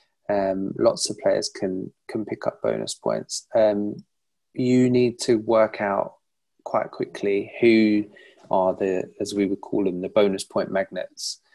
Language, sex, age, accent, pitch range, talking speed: English, male, 20-39, British, 100-120 Hz, 155 wpm